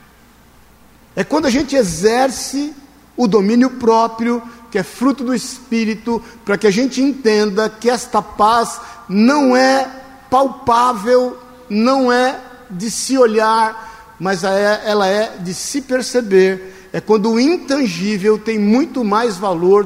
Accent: Brazilian